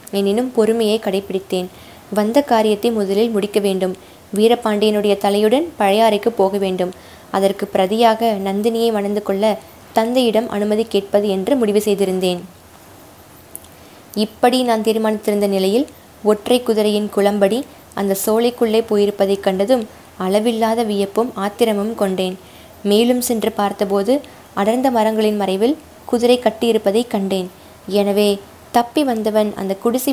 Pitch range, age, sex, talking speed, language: 200-230 Hz, 20-39, female, 105 wpm, Tamil